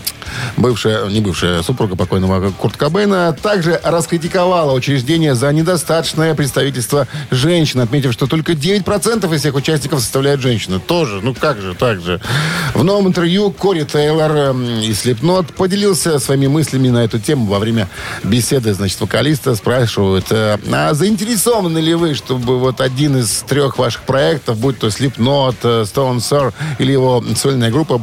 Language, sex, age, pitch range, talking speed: Russian, male, 50-69, 115-165 Hz, 150 wpm